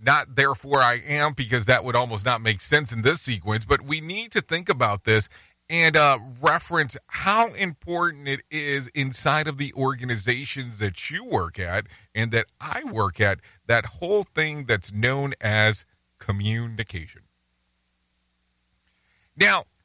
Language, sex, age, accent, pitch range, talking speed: English, male, 40-59, American, 105-150 Hz, 150 wpm